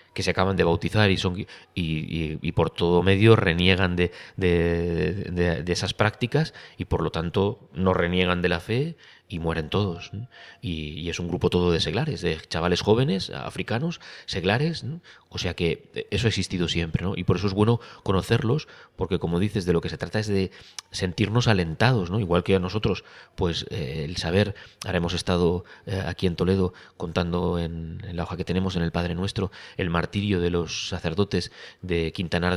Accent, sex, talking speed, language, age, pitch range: Spanish, male, 195 wpm, Spanish, 30-49, 85-105 Hz